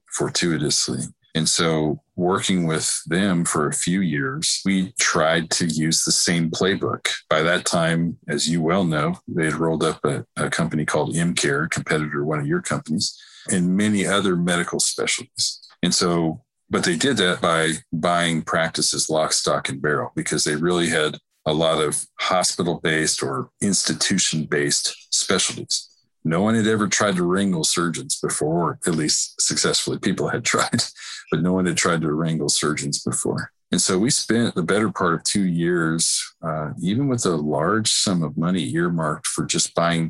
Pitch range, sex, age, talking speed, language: 80-95 Hz, male, 50-69, 170 wpm, English